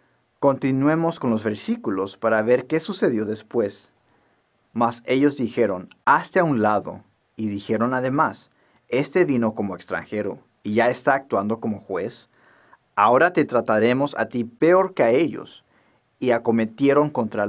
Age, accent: 40-59, Mexican